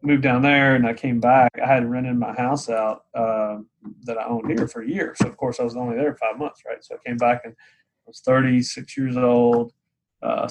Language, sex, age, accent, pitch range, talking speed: English, male, 20-39, American, 115-130 Hz, 240 wpm